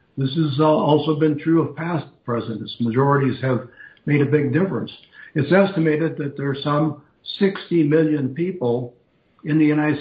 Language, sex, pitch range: English, male, 135-160 Hz